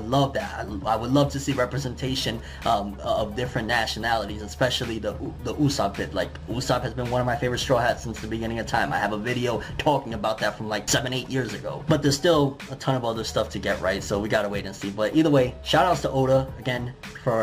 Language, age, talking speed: English, 20-39, 250 wpm